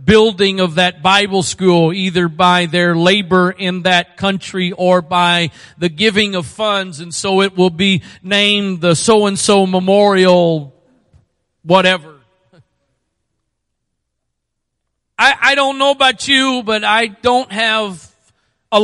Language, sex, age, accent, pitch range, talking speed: English, male, 40-59, American, 175-215 Hz, 125 wpm